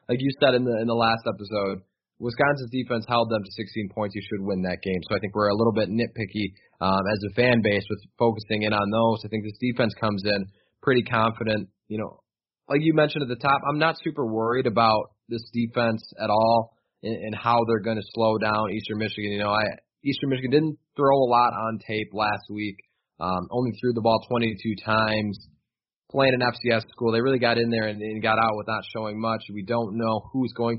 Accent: American